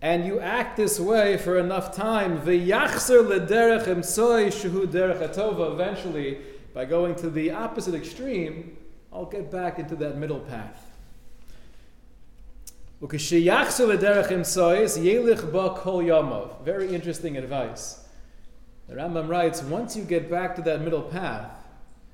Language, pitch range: English, 140-185 Hz